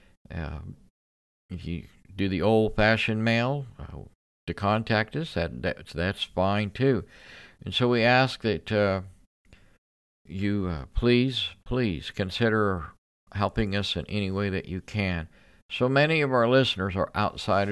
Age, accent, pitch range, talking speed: 50-69, American, 90-115 Hz, 140 wpm